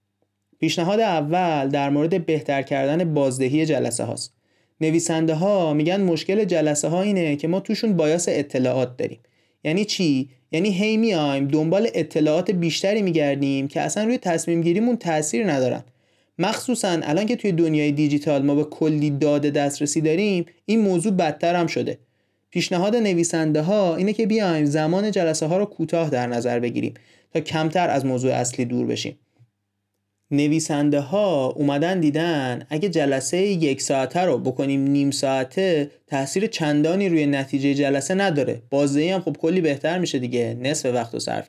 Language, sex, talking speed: Persian, male, 150 wpm